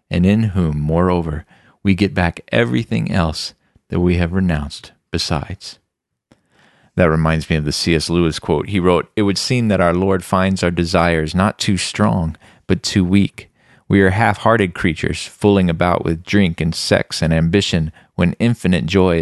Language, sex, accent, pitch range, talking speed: English, male, American, 85-100 Hz, 170 wpm